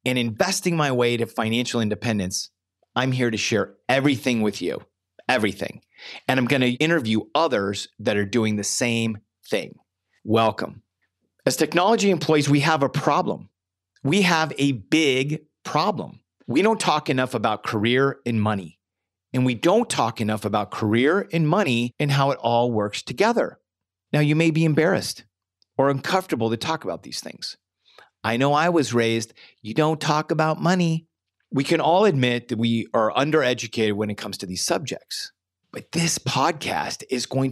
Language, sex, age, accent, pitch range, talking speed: English, male, 40-59, American, 110-150 Hz, 165 wpm